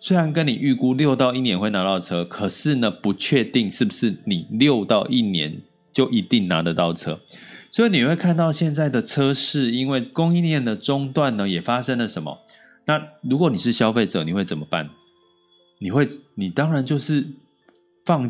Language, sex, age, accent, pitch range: Chinese, male, 30-49, native, 110-160 Hz